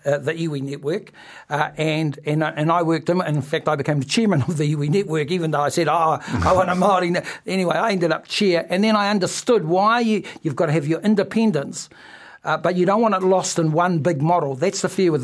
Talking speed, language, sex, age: 250 wpm, English, male, 60-79